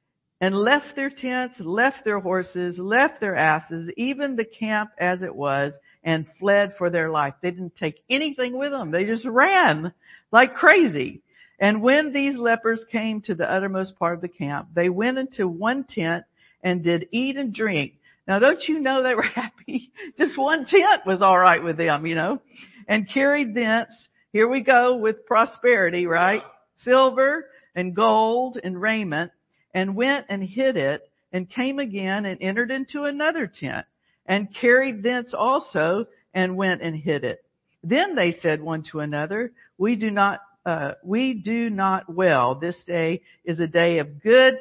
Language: English